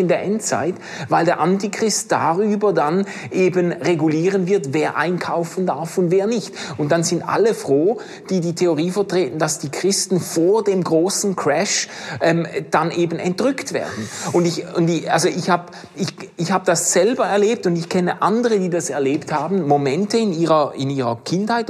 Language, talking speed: German, 180 wpm